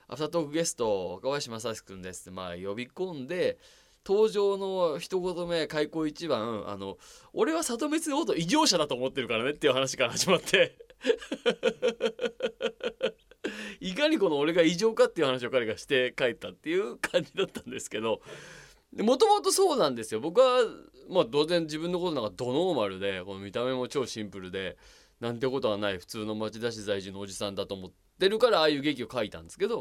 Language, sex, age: Japanese, male, 20-39